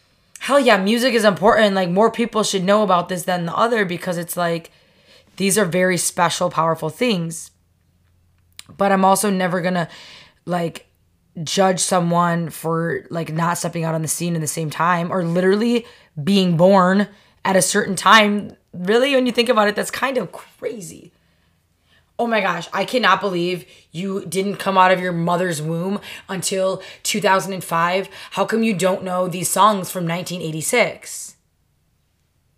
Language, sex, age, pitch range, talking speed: English, female, 20-39, 170-200 Hz, 160 wpm